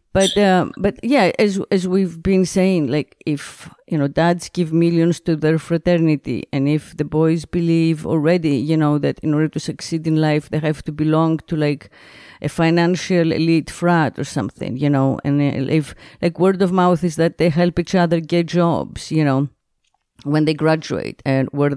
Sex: female